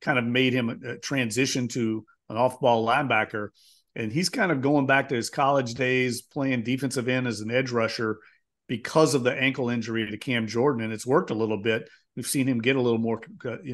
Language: English